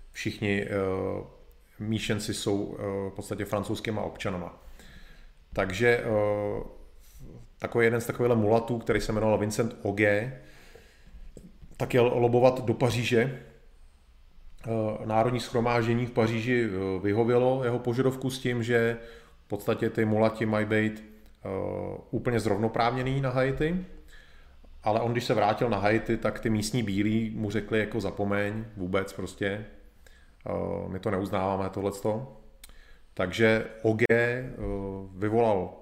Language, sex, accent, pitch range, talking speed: Czech, male, native, 100-120 Hz, 120 wpm